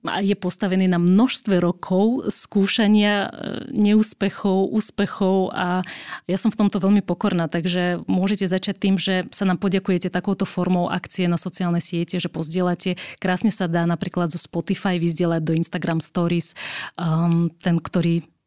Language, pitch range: Slovak, 175-195 Hz